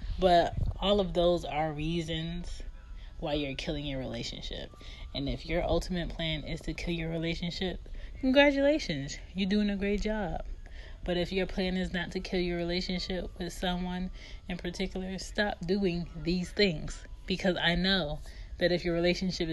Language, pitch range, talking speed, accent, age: English, 110-175 Hz, 160 wpm, American, 30-49